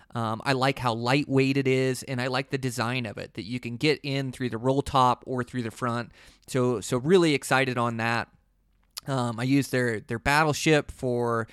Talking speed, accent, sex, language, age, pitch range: 210 wpm, American, male, English, 20-39, 115-135 Hz